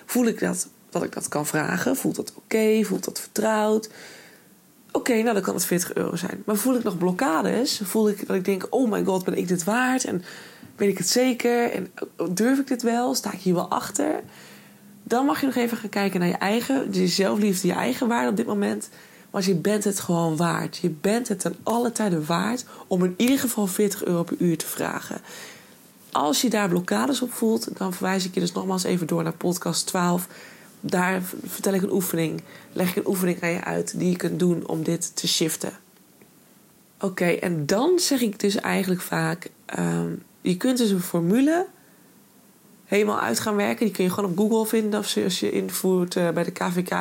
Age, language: 20-39, Dutch